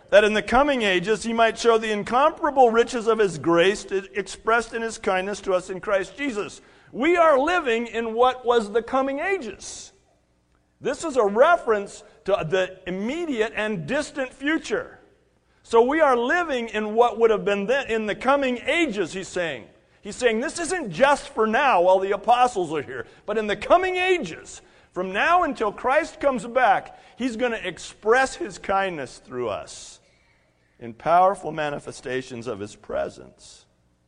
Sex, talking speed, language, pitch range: male, 165 wpm, English, 160-240 Hz